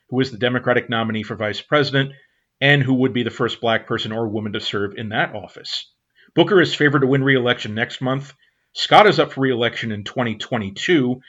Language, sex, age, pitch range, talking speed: English, male, 40-59, 110-135 Hz, 200 wpm